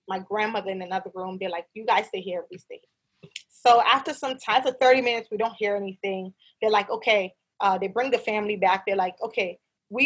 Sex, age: female, 20-39